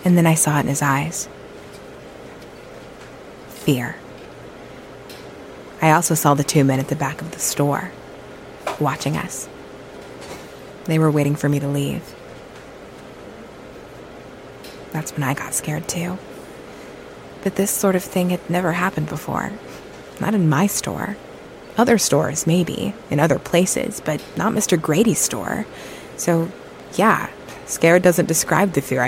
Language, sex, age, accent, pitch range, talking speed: English, female, 20-39, American, 140-175 Hz, 140 wpm